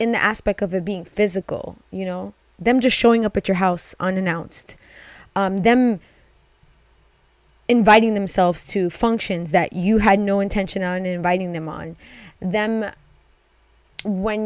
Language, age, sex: English, 20-39, female